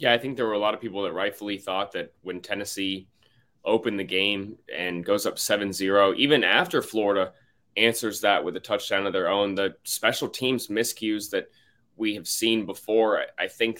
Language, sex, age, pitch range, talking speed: English, male, 20-39, 100-115 Hz, 190 wpm